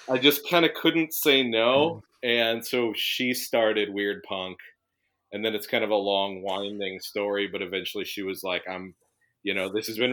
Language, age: English, 30-49